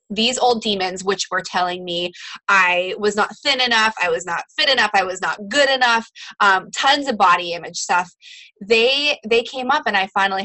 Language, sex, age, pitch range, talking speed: English, female, 20-39, 185-265 Hz, 200 wpm